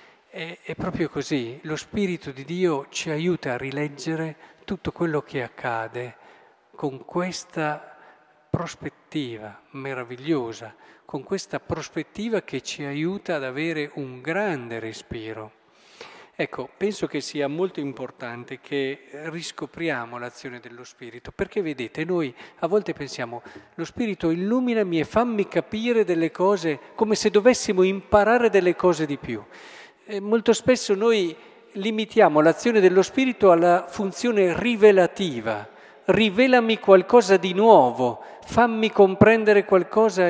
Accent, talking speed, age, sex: native, 120 wpm, 40-59, male